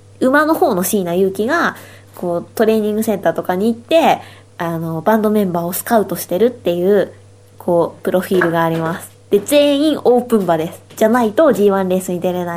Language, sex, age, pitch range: Japanese, female, 20-39, 180-285 Hz